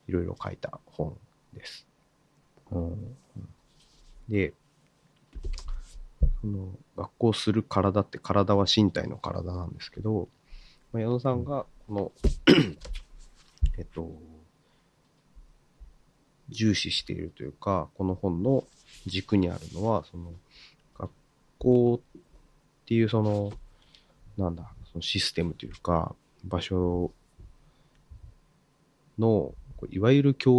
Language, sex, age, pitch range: Japanese, male, 30-49, 90-125 Hz